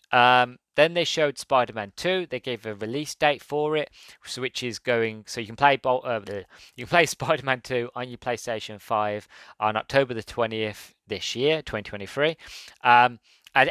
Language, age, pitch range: English, 20-39, 110-135 Hz